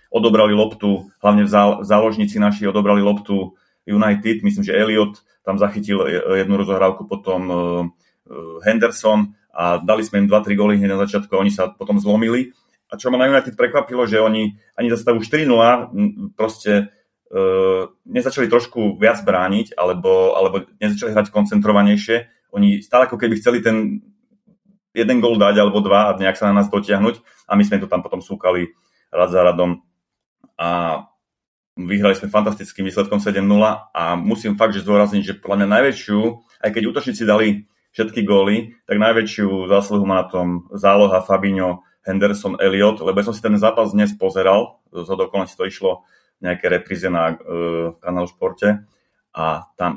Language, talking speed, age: Slovak, 160 wpm, 30-49